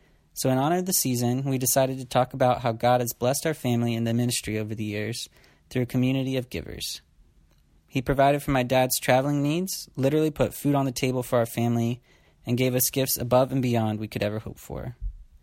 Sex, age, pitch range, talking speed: male, 30-49, 115-135 Hz, 220 wpm